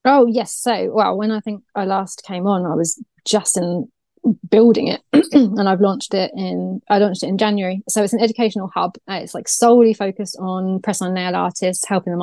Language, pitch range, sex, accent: English, 190-225 Hz, female, British